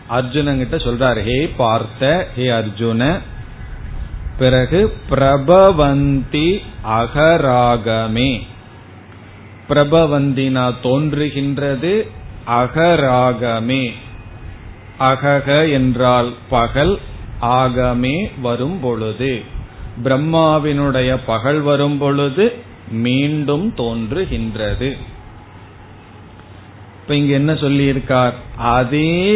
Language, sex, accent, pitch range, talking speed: Tamil, male, native, 115-150 Hz, 55 wpm